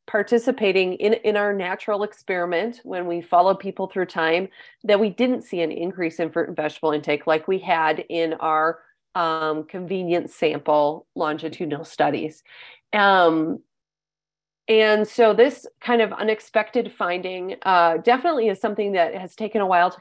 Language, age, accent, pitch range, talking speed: English, 30-49, American, 165-215 Hz, 155 wpm